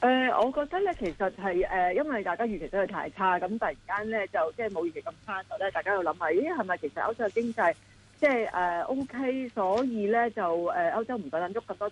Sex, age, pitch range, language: female, 40-59, 175-235 Hz, Chinese